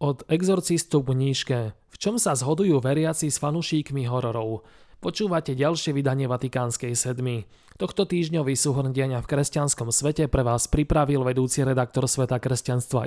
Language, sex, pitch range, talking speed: Slovak, male, 125-165 Hz, 135 wpm